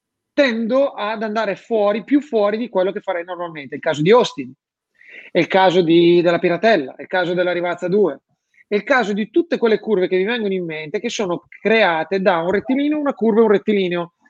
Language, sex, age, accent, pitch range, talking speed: Italian, male, 30-49, native, 185-240 Hz, 215 wpm